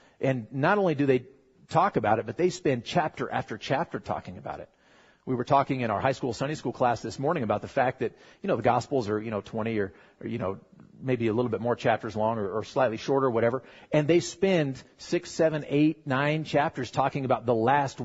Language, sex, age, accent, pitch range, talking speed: English, male, 40-59, American, 115-145 Hz, 230 wpm